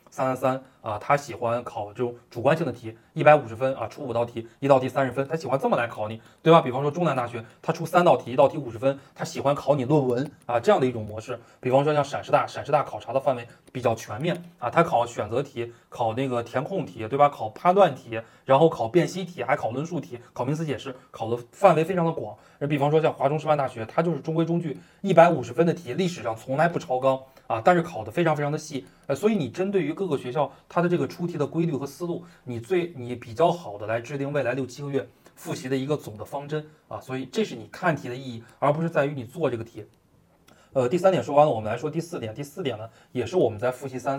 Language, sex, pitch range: Chinese, male, 120-160 Hz